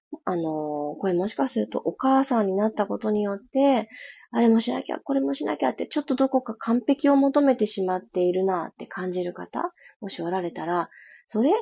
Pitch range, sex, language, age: 180-270 Hz, female, Japanese, 20-39